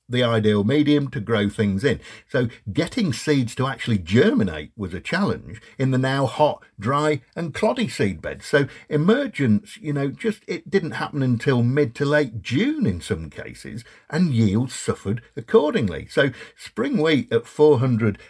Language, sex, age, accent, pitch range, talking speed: English, male, 50-69, British, 110-150 Hz, 165 wpm